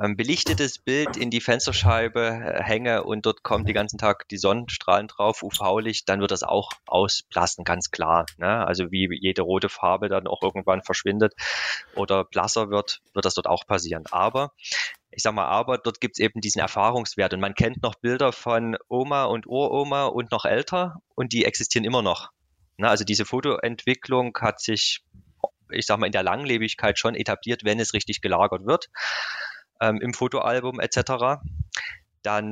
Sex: male